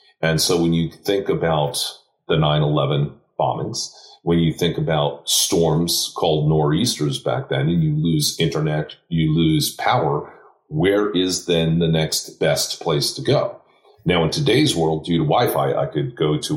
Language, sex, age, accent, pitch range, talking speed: English, male, 40-59, American, 75-95 Hz, 165 wpm